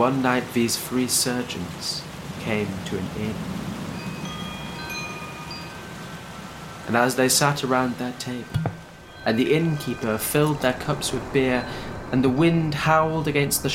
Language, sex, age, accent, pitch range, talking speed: English, male, 30-49, British, 110-145 Hz, 130 wpm